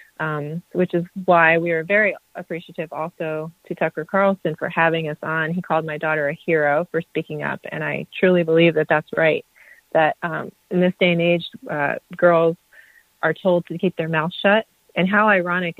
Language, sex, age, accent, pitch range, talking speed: English, female, 30-49, American, 160-185 Hz, 195 wpm